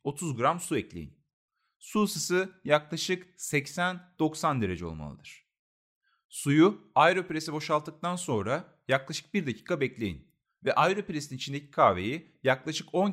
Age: 40-59